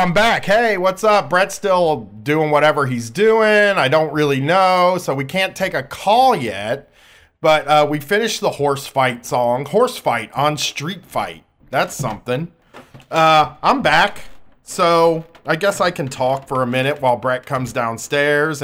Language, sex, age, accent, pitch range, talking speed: English, male, 40-59, American, 125-165 Hz, 170 wpm